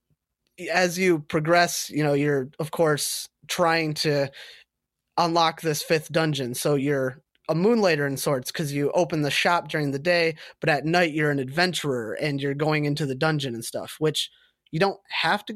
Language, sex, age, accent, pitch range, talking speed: English, male, 20-39, American, 140-170 Hz, 180 wpm